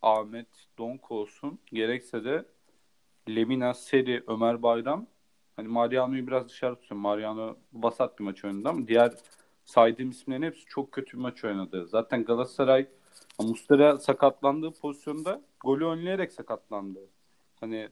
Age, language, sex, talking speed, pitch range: 40-59, Turkish, male, 125 wpm, 120-160 Hz